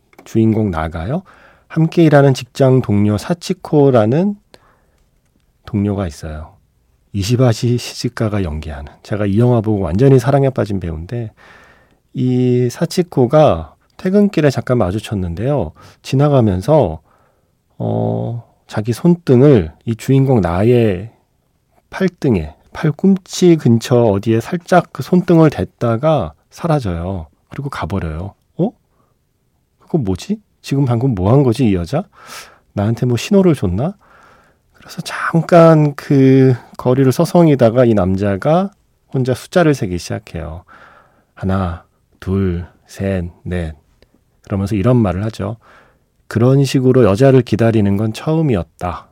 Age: 40-59